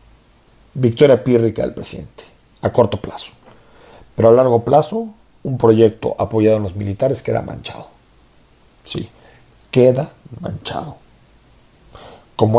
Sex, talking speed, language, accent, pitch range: male, 110 wpm, Spanish, Mexican, 105-130 Hz